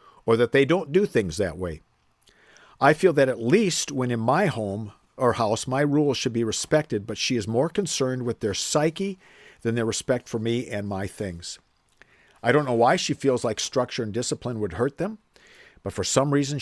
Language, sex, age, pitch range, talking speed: English, male, 50-69, 110-145 Hz, 205 wpm